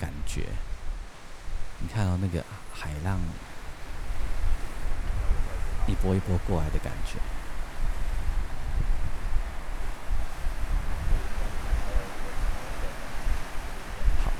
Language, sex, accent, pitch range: Chinese, male, native, 80-95 Hz